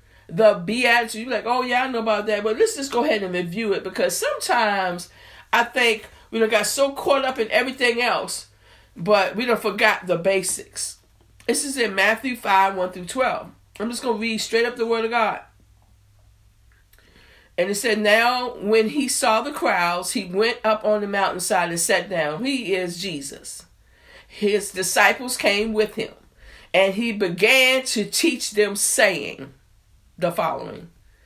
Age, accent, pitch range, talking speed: 50-69, American, 175-245 Hz, 175 wpm